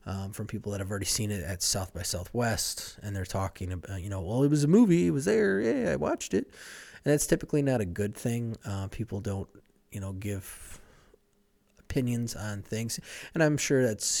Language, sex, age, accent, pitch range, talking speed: English, male, 20-39, American, 95-115 Hz, 210 wpm